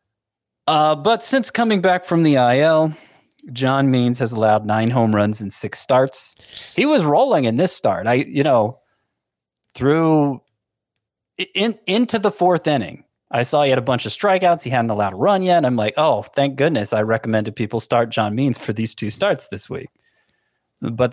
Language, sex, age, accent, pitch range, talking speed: English, male, 30-49, American, 110-155 Hz, 185 wpm